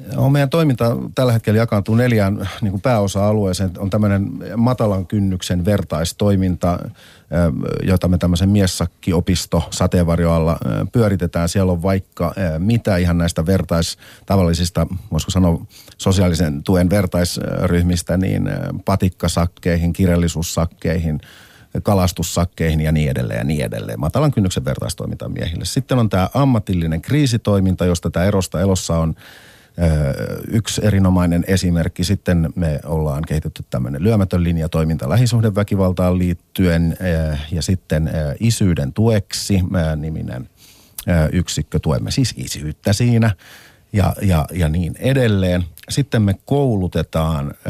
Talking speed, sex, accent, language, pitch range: 110 wpm, male, native, Finnish, 80-100 Hz